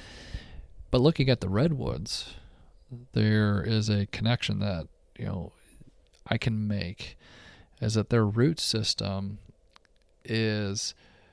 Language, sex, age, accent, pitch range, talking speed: English, male, 40-59, American, 105-115 Hz, 110 wpm